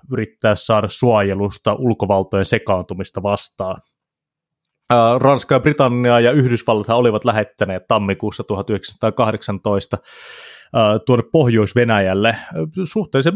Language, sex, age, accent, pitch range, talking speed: Finnish, male, 20-39, native, 100-130 Hz, 70 wpm